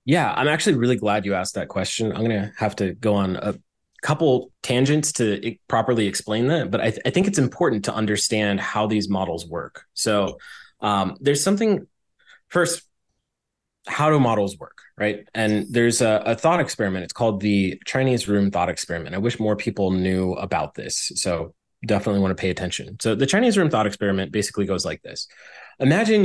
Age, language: 20-39, English